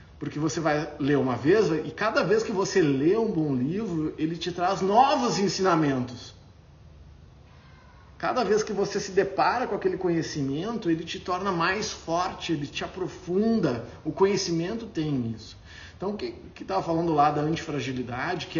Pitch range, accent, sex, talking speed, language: 125-180 Hz, Brazilian, male, 170 wpm, Portuguese